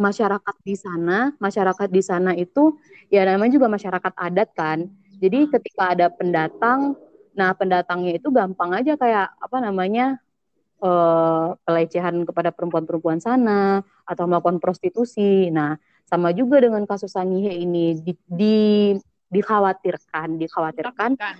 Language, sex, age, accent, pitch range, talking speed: Indonesian, female, 20-39, native, 170-205 Hz, 125 wpm